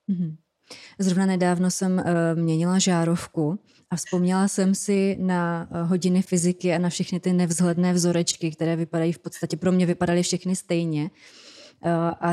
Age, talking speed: 20-39, 135 wpm